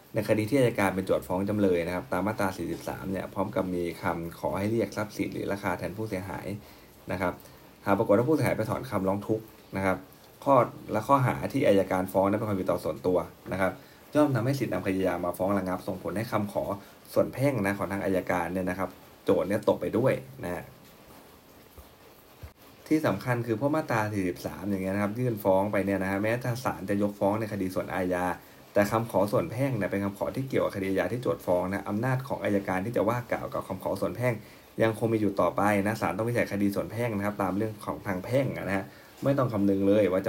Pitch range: 90-105 Hz